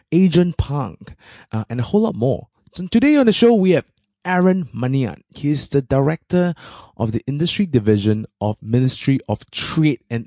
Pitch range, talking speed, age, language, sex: 105-140 Hz, 170 wpm, 20-39, English, male